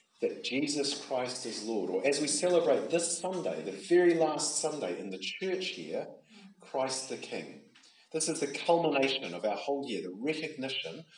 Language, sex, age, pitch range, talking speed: English, male, 40-59, 120-200 Hz, 170 wpm